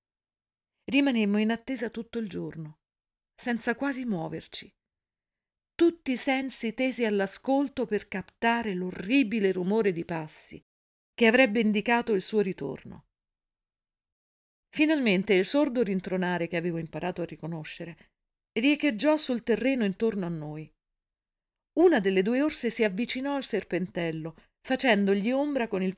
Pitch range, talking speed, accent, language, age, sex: 170-245 Hz, 120 wpm, native, Italian, 50-69, female